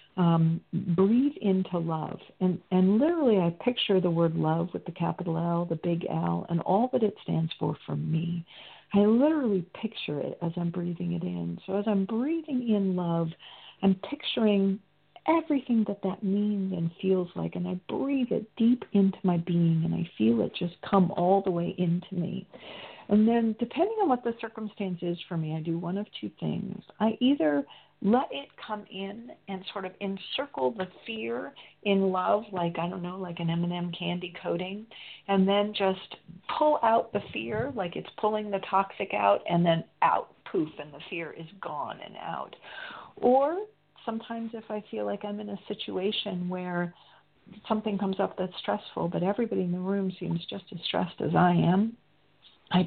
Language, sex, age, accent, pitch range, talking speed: English, female, 50-69, American, 175-215 Hz, 185 wpm